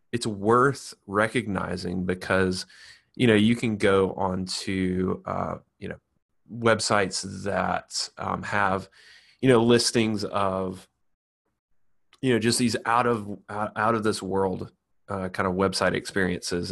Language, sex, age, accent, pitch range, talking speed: English, male, 30-49, American, 95-120 Hz, 130 wpm